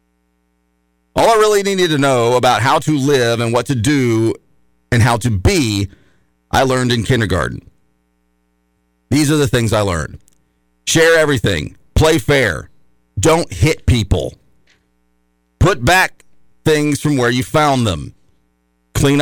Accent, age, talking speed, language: American, 40-59, 135 wpm, English